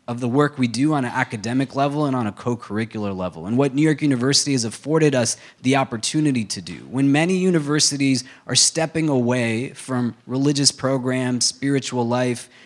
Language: English